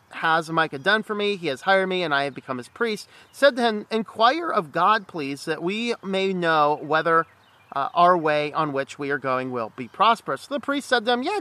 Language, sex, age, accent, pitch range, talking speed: English, male, 40-59, American, 165-235 Hz, 235 wpm